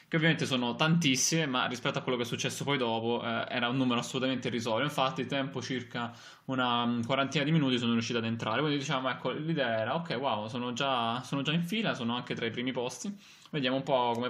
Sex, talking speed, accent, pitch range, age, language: male, 220 wpm, native, 120-160 Hz, 20-39, Italian